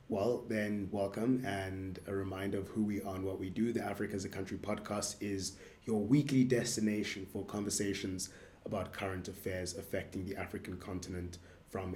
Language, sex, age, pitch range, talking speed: English, male, 20-39, 95-120 Hz, 170 wpm